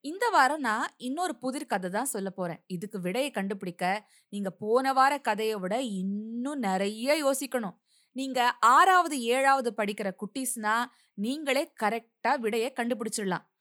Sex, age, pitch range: female, 20-39, 200-275 Hz